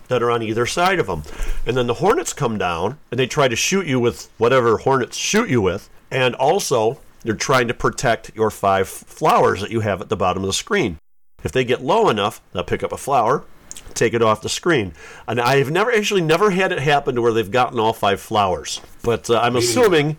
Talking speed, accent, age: 230 wpm, American, 50-69